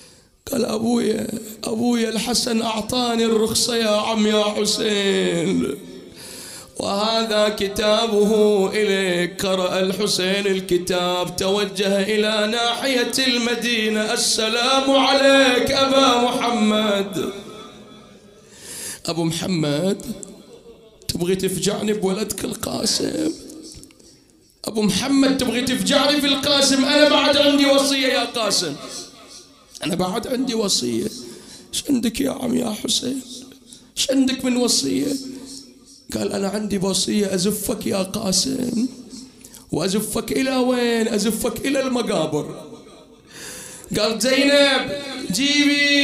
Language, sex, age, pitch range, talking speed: Arabic, male, 30-49, 210-260 Hz, 95 wpm